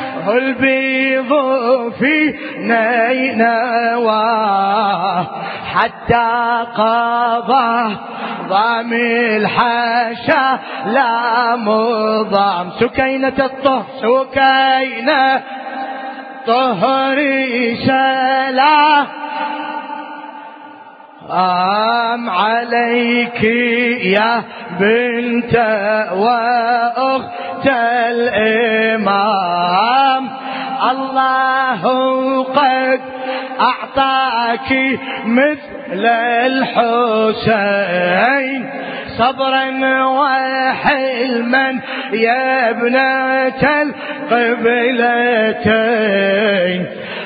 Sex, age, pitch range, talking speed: male, 20-39, 230-265 Hz, 35 wpm